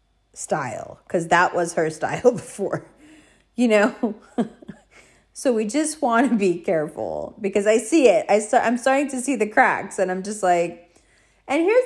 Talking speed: 175 wpm